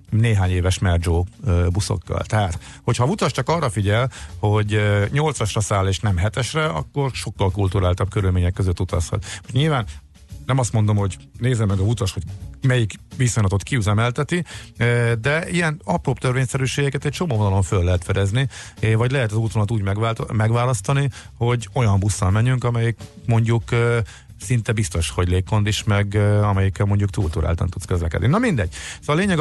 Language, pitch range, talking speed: Hungarian, 95-120 Hz, 155 wpm